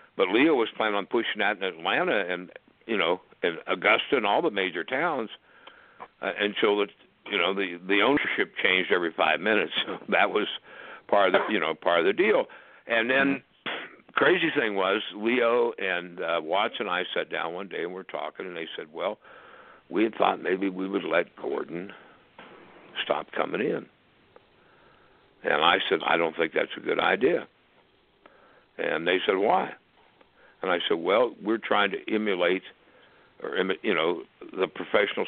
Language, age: English, 60-79